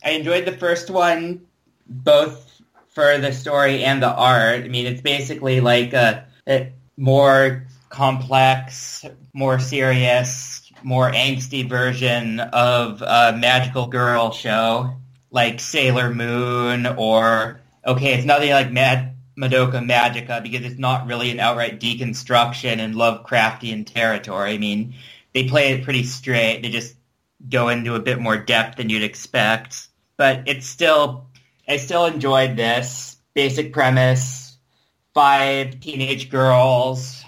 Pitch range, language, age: 120-135 Hz, English, 20-39